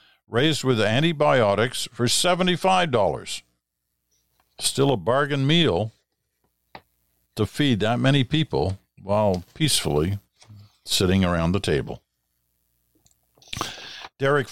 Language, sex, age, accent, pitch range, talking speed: English, male, 60-79, American, 95-135 Hz, 85 wpm